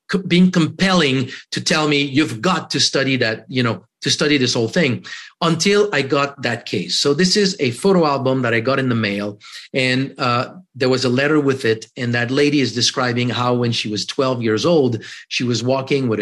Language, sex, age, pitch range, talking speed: English, male, 40-59, 125-165 Hz, 215 wpm